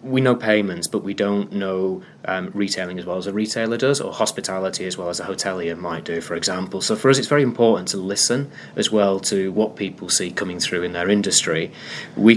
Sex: male